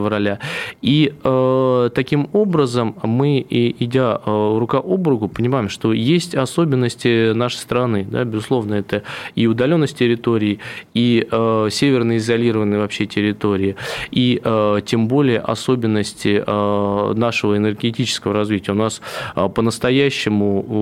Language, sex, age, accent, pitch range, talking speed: Russian, male, 20-39, native, 105-120 Hz, 110 wpm